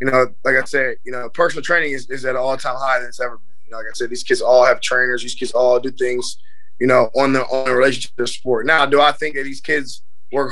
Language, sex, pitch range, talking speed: English, male, 135-155 Hz, 295 wpm